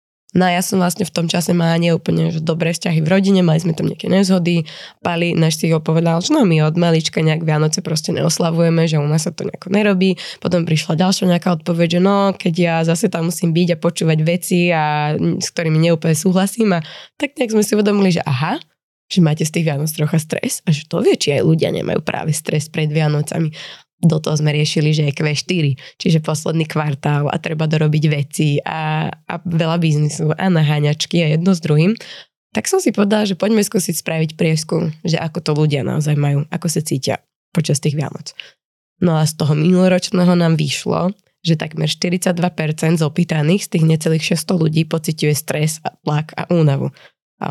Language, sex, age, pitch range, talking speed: Slovak, female, 20-39, 155-180 Hz, 195 wpm